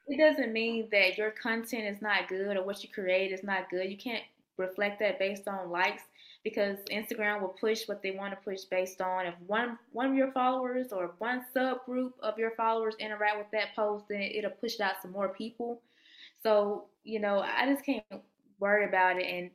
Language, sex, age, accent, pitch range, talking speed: English, female, 20-39, American, 180-215 Hz, 210 wpm